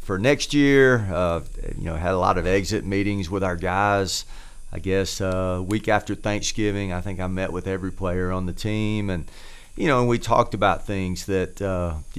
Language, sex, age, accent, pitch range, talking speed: English, male, 40-59, American, 90-105 Hz, 205 wpm